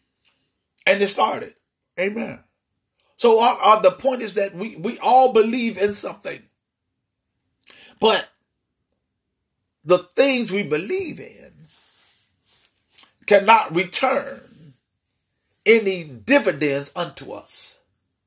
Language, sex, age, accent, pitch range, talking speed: English, male, 40-59, American, 180-265 Hz, 95 wpm